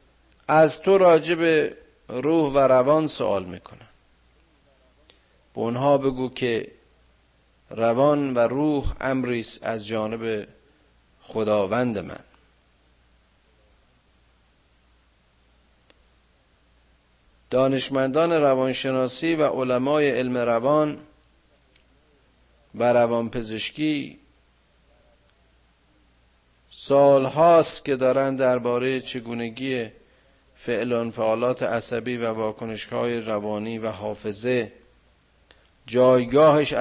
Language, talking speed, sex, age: Persian, 65 wpm, male, 50-69